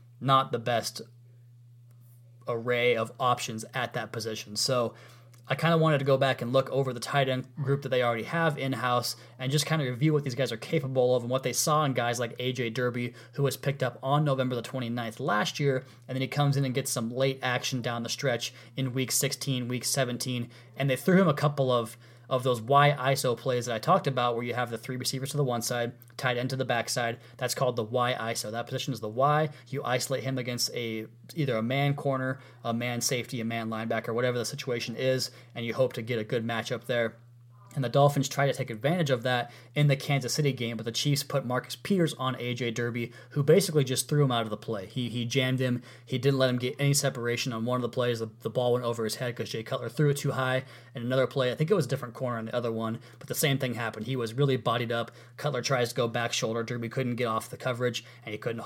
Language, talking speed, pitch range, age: English, 250 wpm, 120-140 Hz, 20-39